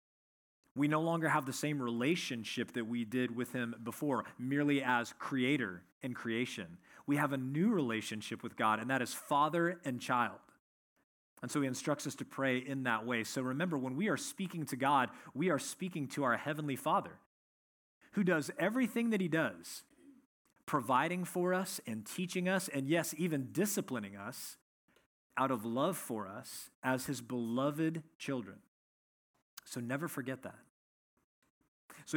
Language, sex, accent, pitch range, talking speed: English, male, American, 125-160 Hz, 160 wpm